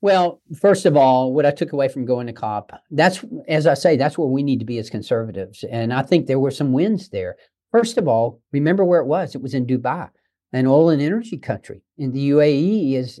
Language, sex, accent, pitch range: English, male, American, 125-155 Hz